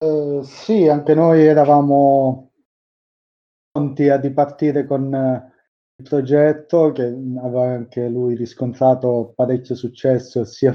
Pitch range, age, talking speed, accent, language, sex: 125-140 Hz, 20-39, 105 wpm, native, Italian, male